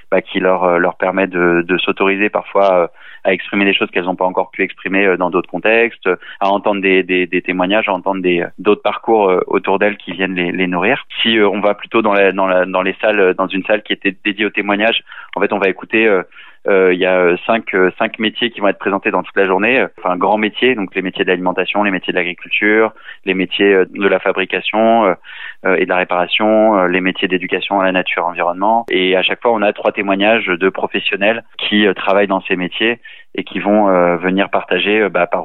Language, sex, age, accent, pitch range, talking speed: French, male, 20-39, French, 90-105 Hz, 225 wpm